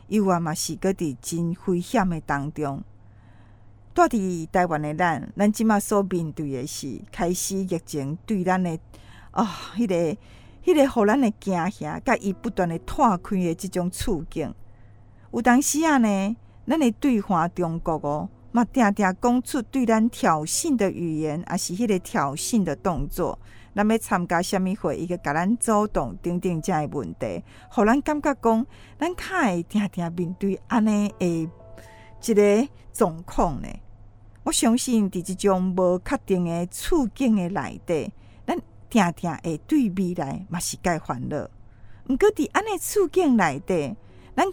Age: 50-69